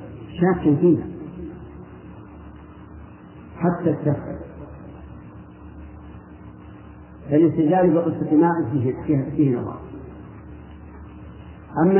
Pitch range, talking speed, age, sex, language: 100-150 Hz, 50 wpm, 50-69, male, Arabic